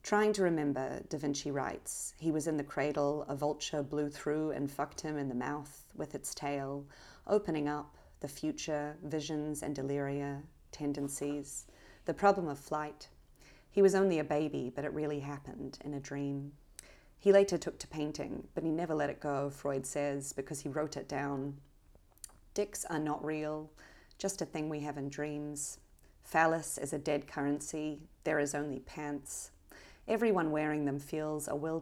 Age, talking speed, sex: 30-49, 175 wpm, female